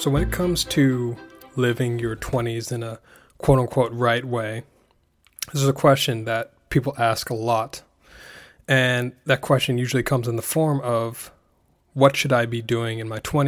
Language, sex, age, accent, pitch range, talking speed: English, male, 20-39, American, 115-135 Hz, 170 wpm